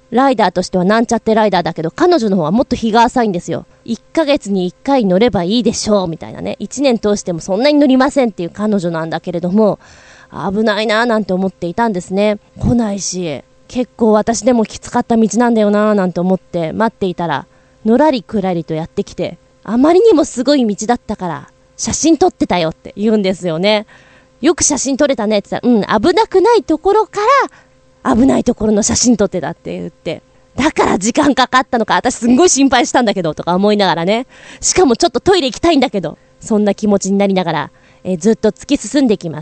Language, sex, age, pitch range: Japanese, female, 20-39, 190-275 Hz